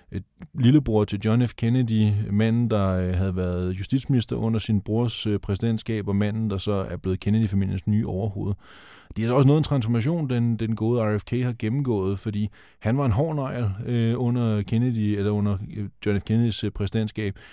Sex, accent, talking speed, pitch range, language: male, native, 185 wpm, 105-125 Hz, Danish